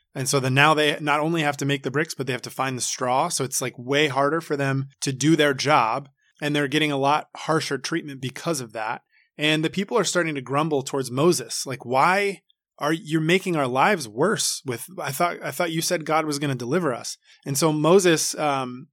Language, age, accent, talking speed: English, 20-39, American, 235 wpm